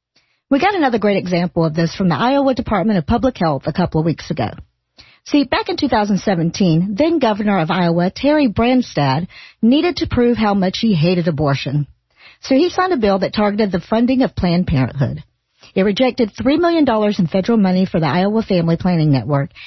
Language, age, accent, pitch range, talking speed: English, 50-69, American, 175-245 Hz, 185 wpm